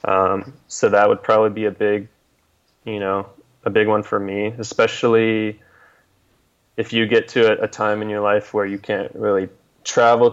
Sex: male